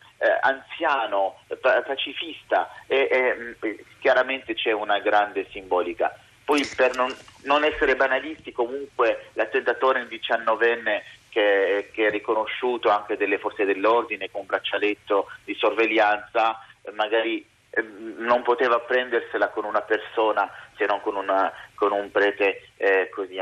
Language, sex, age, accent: Italian, male, 30-49, native